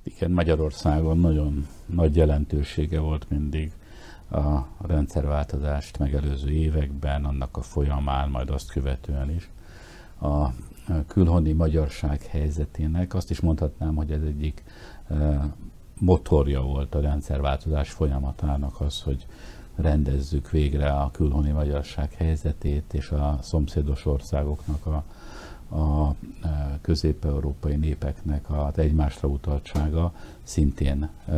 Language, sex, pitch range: Hungarian, male, 75-80 Hz